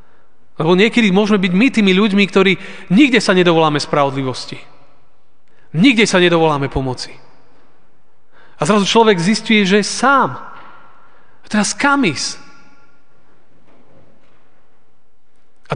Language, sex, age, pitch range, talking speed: Slovak, male, 40-59, 150-195 Hz, 105 wpm